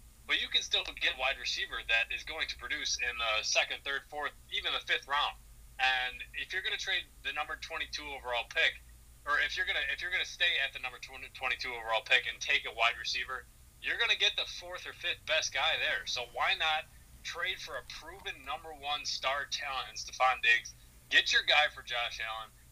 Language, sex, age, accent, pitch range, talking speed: English, male, 20-39, American, 115-135 Hz, 210 wpm